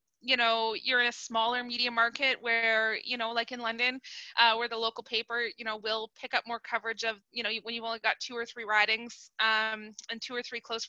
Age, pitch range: 20-39, 230-290 Hz